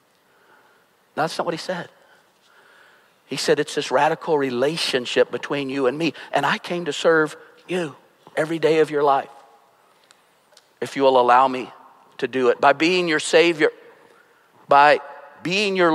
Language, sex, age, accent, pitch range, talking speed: English, male, 50-69, American, 150-190 Hz, 160 wpm